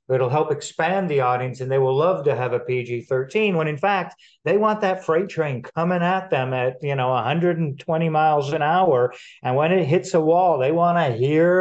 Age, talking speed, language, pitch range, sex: 50-69, 210 wpm, English, 130-170 Hz, male